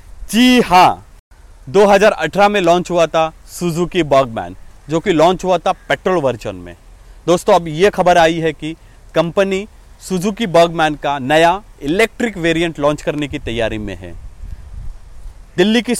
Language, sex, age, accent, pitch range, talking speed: Hindi, male, 40-59, native, 125-200 Hz, 145 wpm